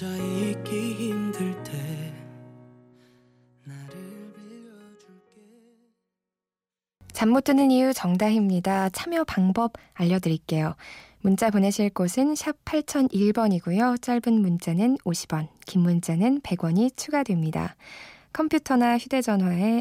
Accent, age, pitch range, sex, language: native, 20-39, 175-230 Hz, female, Korean